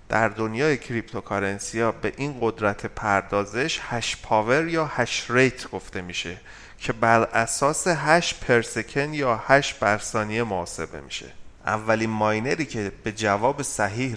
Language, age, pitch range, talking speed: Persian, 30-49, 100-125 Hz, 125 wpm